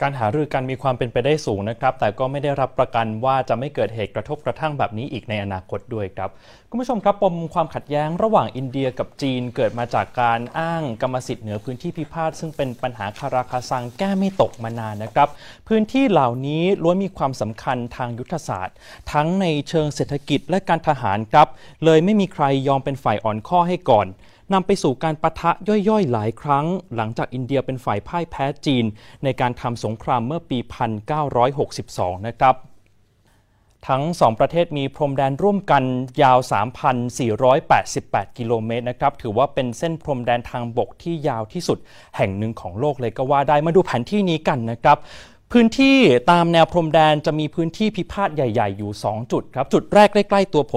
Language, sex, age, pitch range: Thai, male, 20-39, 120-165 Hz